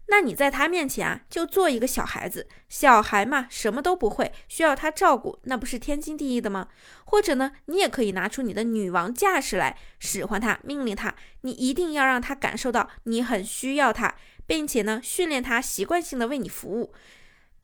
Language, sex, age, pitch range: Chinese, female, 20-39, 225-300 Hz